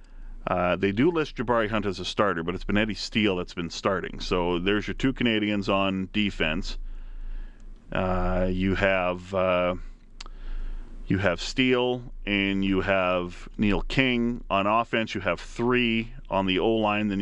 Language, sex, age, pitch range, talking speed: English, male, 40-59, 95-120 Hz, 155 wpm